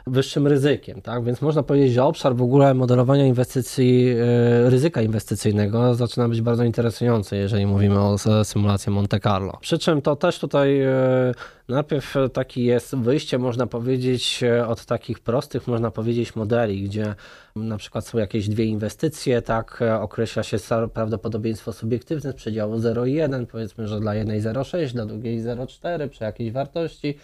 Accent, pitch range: native, 115-135 Hz